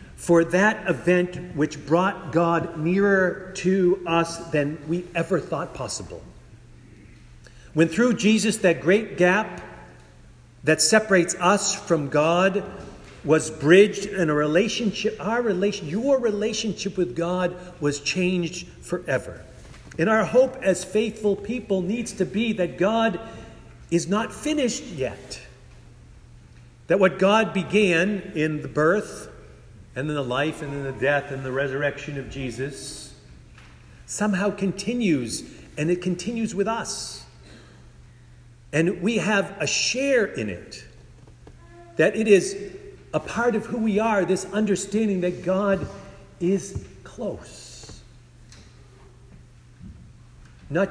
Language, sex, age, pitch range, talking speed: English, male, 50-69, 145-200 Hz, 125 wpm